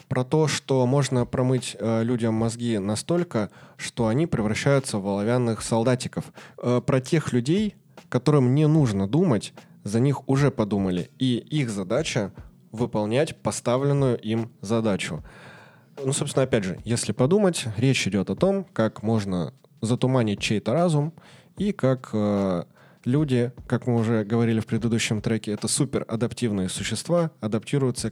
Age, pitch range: 20-39, 105-135 Hz